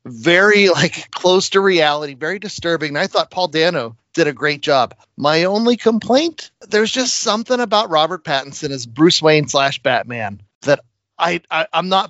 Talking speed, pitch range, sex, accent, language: 175 wpm, 145-215 Hz, male, American, English